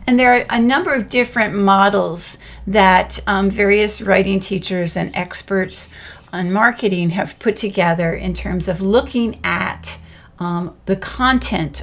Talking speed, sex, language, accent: 140 wpm, female, English, American